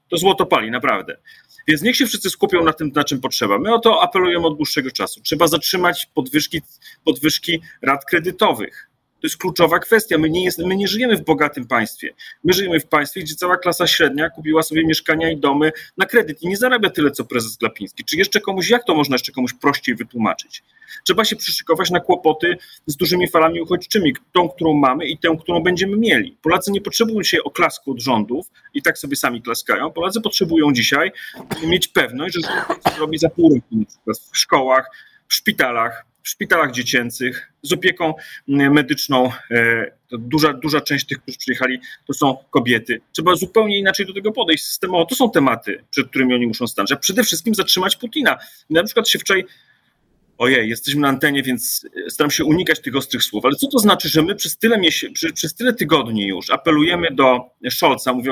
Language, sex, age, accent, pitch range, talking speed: Polish, male, 40-59, native, 140-190 Hz, 185 wpm